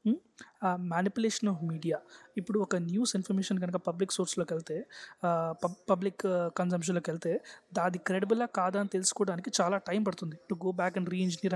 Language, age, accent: Telugu, 20-39, native